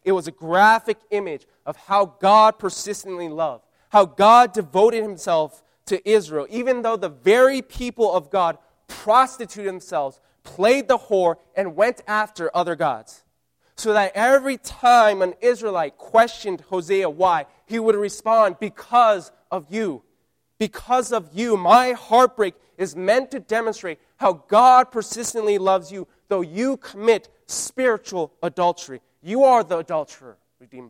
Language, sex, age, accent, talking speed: English, male, 20-39, American, 140 wpm